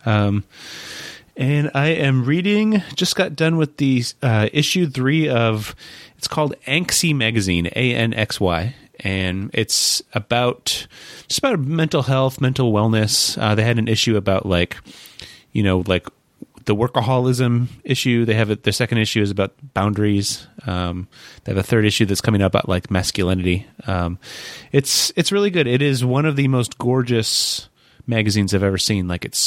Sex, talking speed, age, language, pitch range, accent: male, 160 wpm, 30-49, English, 95-125 Hz, American